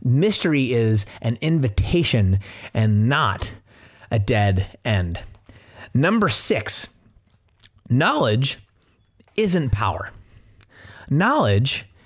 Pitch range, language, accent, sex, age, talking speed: 105-135 Hz, English, American, male, 30-49, 75 wpm